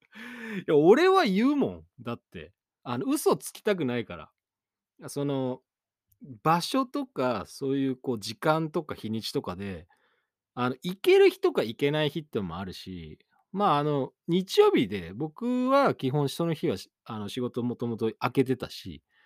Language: Japanese